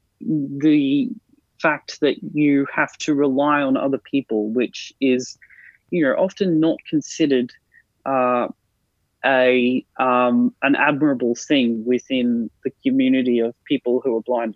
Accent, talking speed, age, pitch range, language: Australian, 130 wpm, 20-39, 125-185 Hz, English